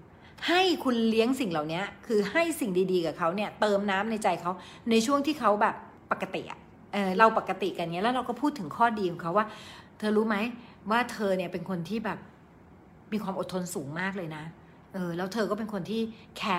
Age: 60-79